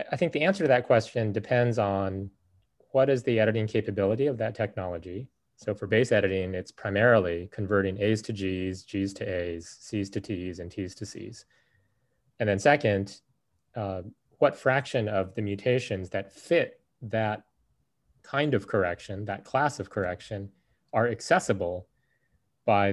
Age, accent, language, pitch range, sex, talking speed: 30-49, American, English, 100-120 Hz, male, 155 wpm